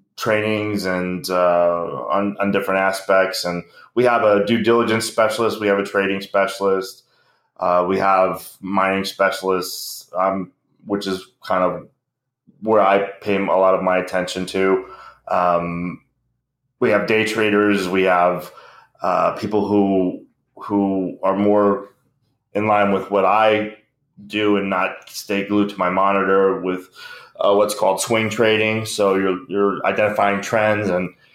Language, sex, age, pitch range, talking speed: English, male, 20-39, 95-110 Hz, 145 wpm